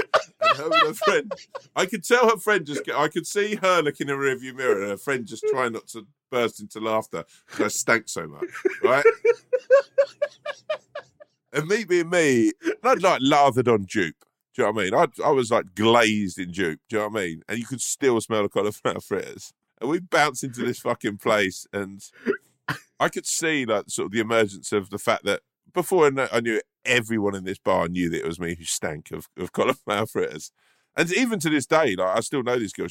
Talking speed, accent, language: 230 wpm, British, English